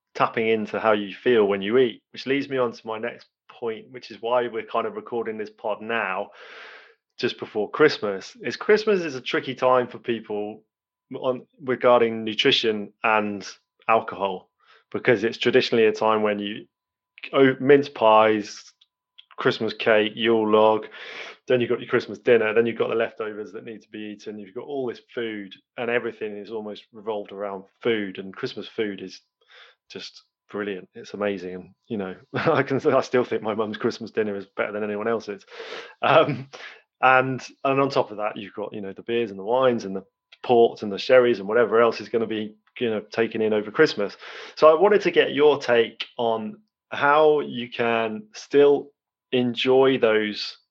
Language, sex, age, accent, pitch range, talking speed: English, male, 20-39, British, 105-125 Hz, 185 wpm